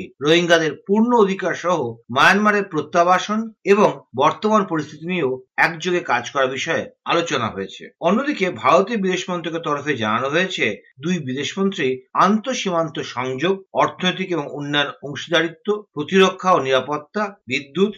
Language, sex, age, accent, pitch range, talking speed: Bengali, male, 50-69, native, 130-195 Hz, 35 wpm